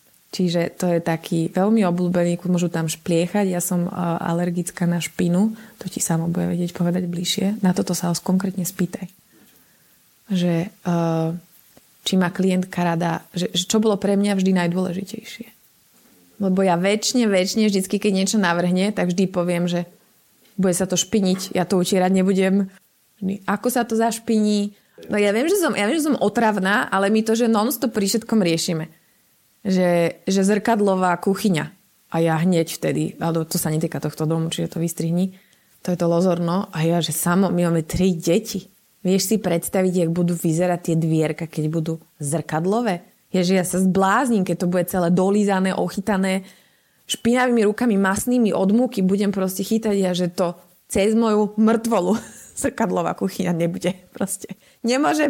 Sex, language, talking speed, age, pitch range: female, Slovak, 165 wpm, 20-39, 175-205 Hz